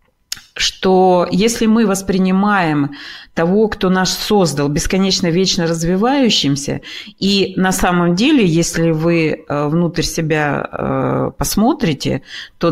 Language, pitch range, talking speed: Russian, 155-205 Hz, 100 wpm